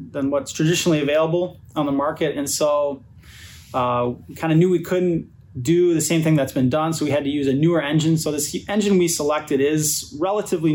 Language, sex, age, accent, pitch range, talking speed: English, male, 20-39, American, 135-155 Hz, 205 wpm